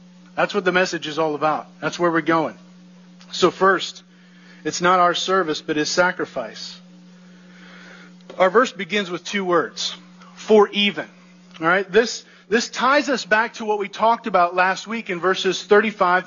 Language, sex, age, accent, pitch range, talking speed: English, male, 40-59, American, 185-270 Hz, 165 wpm